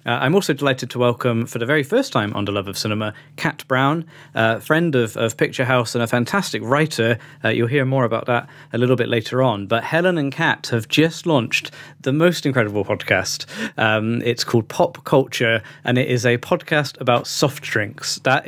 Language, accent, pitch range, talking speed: English, British, 120-145 Hz, 210 wpm